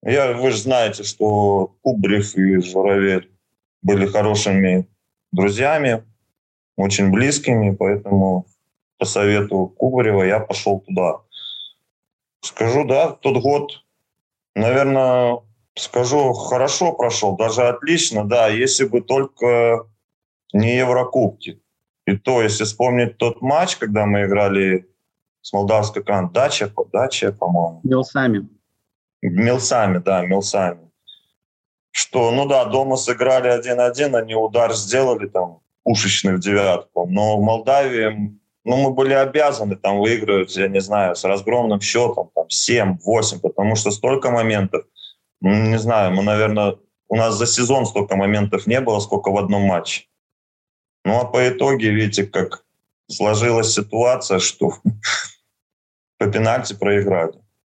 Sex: male